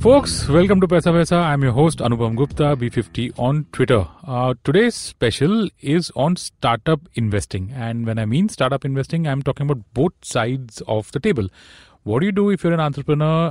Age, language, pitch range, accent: 30-49, English, 115-145 Hz, Indian